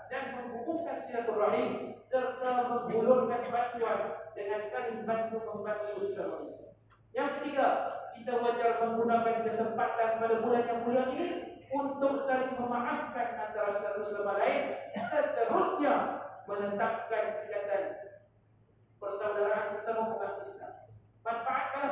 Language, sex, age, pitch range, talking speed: Indonesian, male, 50-69, 215-255 Hz, 105 wpm